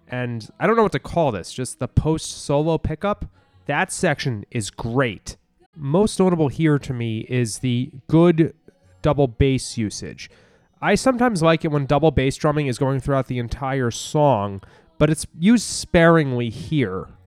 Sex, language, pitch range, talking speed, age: male, English, 120-160 Hz, 160 wpm, 30-49